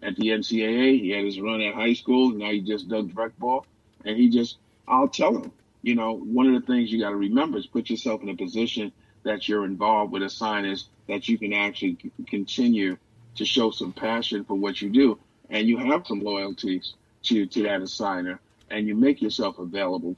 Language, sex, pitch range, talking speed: English, male, 105-125 Hz, 215 wpm